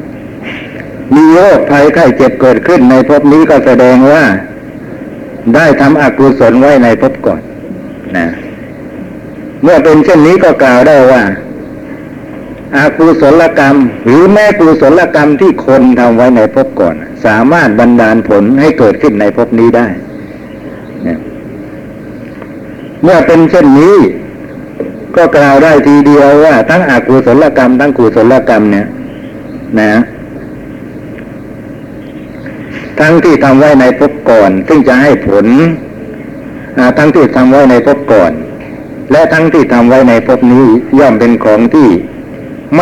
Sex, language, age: male, Thai, 60-79